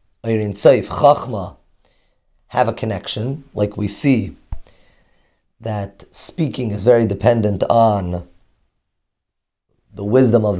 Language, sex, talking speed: English, male, 100 wpm